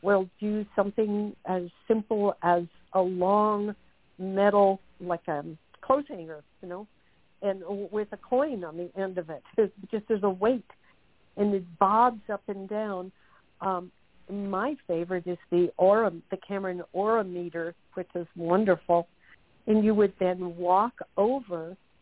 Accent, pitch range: American, 170-200 Hz